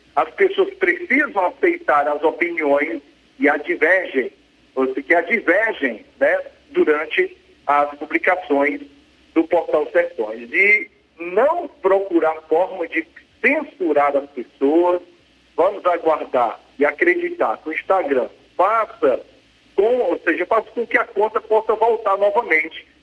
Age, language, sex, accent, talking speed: 40-59, Portuguese, male, Brazilian, 115 wpm